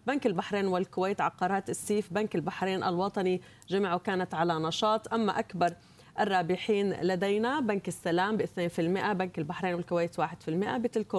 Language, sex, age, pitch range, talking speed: Arabic, female, 30-49, 180-220 Hz, 130 wpm